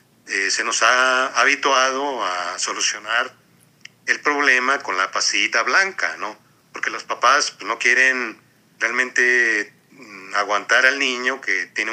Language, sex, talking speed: Spanish, male, 130 wpm